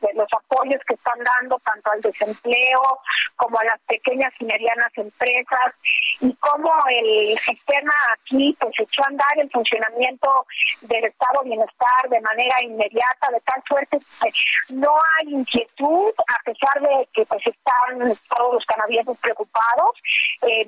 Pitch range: 225-275 Hz